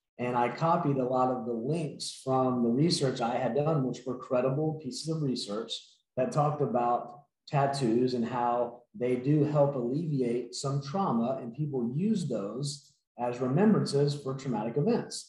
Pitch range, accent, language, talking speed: 130-160 Hz, American, English, 160 wpm